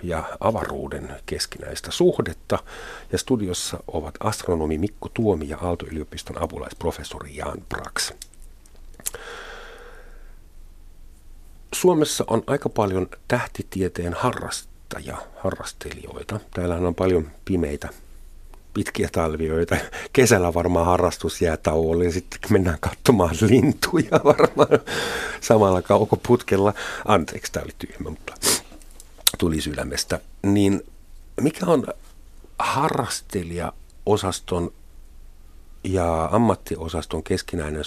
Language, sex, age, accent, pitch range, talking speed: Finnish, male, 50-69, native, 80-100 Hz, 85 wpm